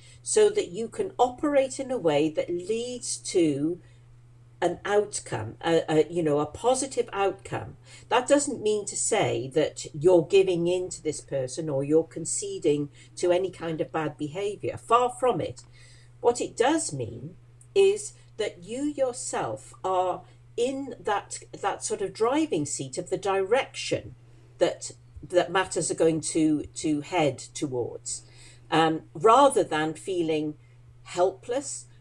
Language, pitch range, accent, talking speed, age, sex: English, 125-200 Hz, British, 145 wpm, 50-69, female